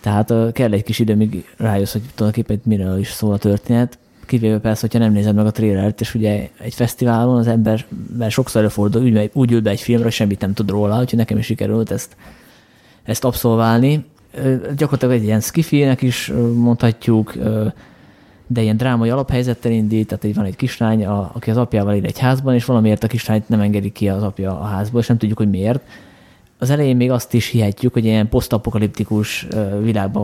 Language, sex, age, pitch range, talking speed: Hungarian, male, 20-39, 105-120 Hz, 195 wpm